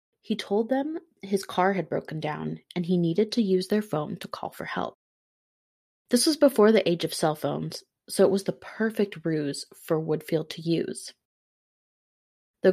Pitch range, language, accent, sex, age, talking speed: 160-205 Hz, English, American, female, 20-39, 180 wpm